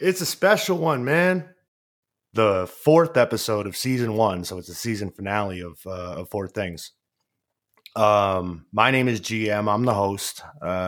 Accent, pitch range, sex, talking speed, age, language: American, 100-145 Hz, male, 165 wpm, 30-49, English